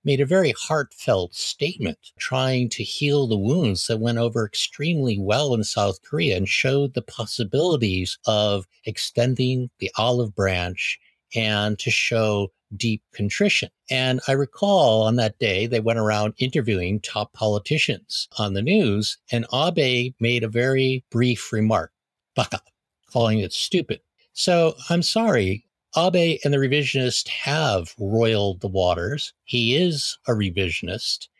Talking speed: 140 wpm